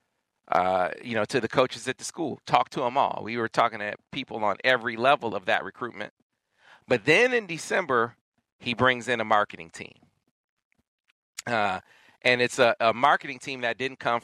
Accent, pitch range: American, 115-140 Hz